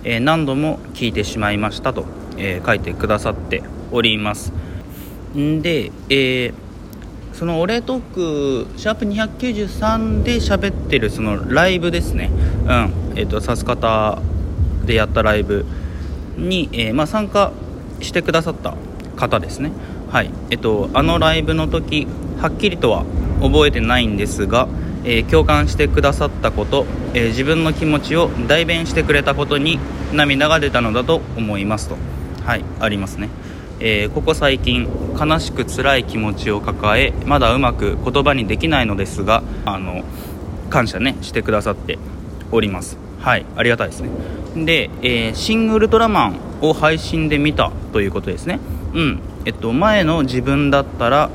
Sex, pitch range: male, 95-145 Hz